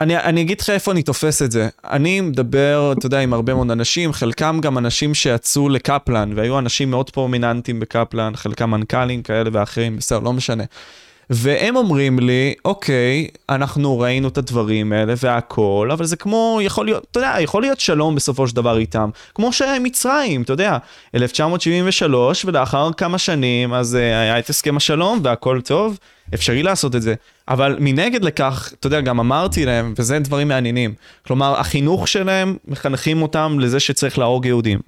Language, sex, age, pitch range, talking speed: Hebrew, male, 20-39, 125-170 Hz, 170 wpm